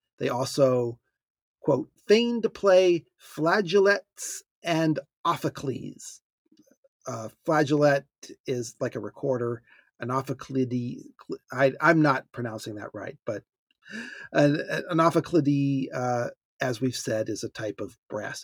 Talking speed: 110 wpm